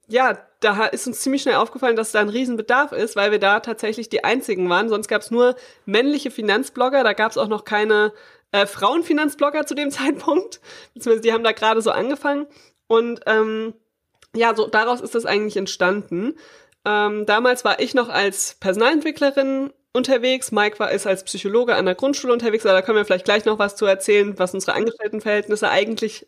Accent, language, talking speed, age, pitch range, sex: German, German, 185 wpm, 20-39, 205-250 Hz, female